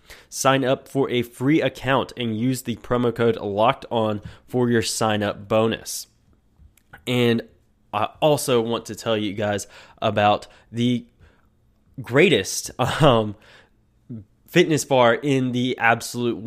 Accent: American